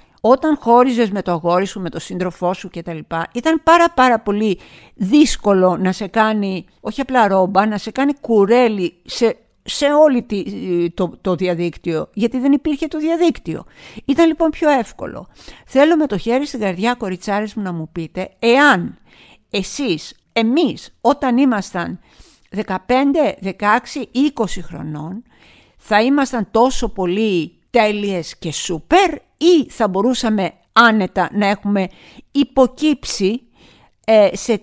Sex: female